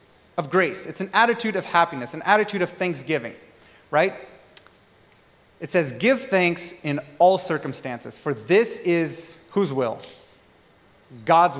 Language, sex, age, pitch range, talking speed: English, male, 30-49, 155-205 Hz, 130 wpm